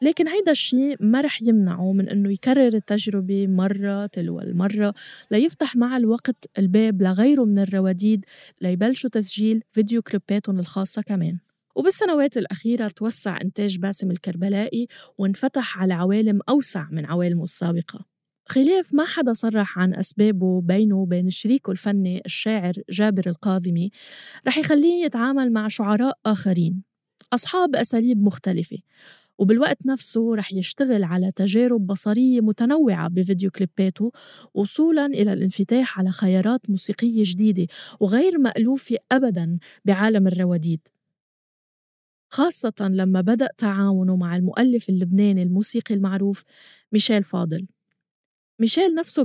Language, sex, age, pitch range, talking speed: Arabic, female, 20-39, 185-240 Hz, 115 wpm